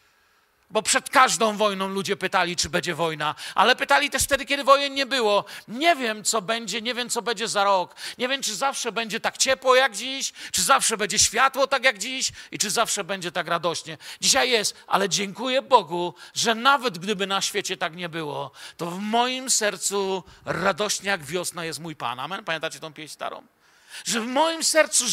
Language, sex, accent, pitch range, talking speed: Polish, male, native, 190-265 Hz, 195 wpm